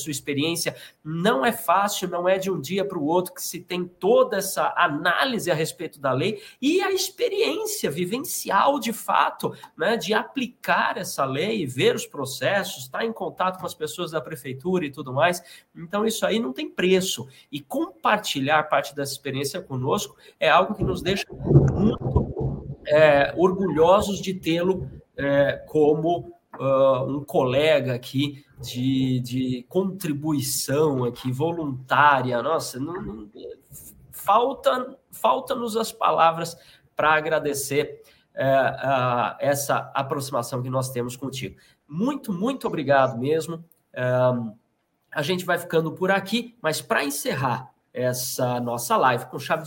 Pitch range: 140-205 Hz